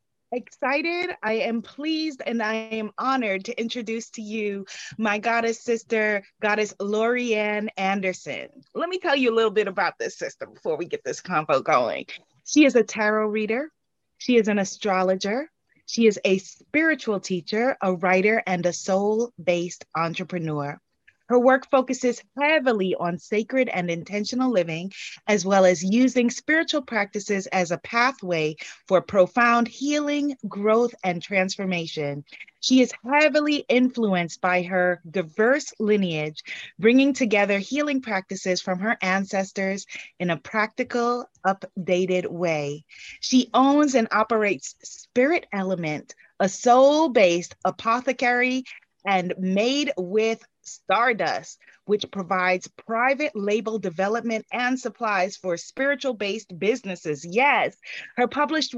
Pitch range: 190-265 Hz